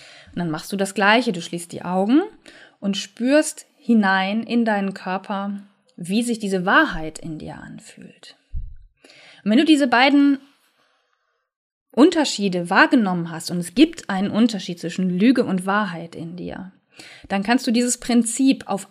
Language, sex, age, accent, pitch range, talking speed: German, female, 20-39, German, 190-240 Hz, 150 wpm